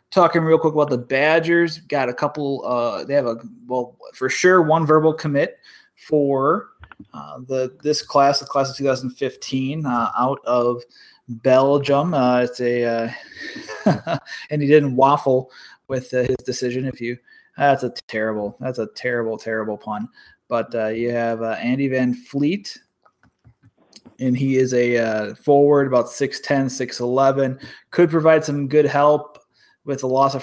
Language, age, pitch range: English, 20-39, 120-140 Hz